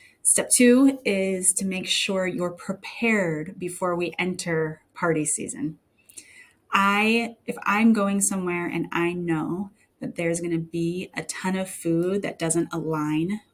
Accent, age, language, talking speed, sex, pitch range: American, 30-49, English, 140 wpm, female, 175-210 Hz